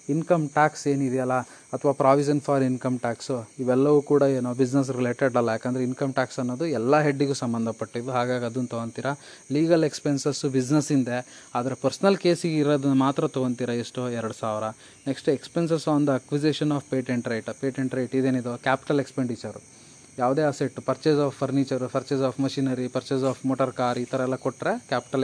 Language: Kannada